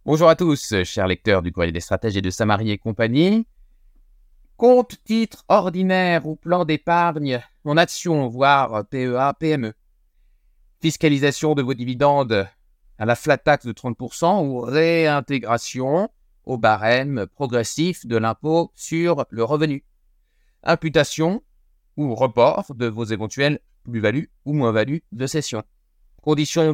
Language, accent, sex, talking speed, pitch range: French, French, male, 125 wpm, 100-150 Hz